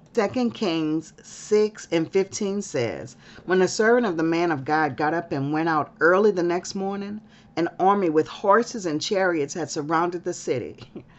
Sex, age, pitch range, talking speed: female, 40-59, 165-225 Hz, 175 wpm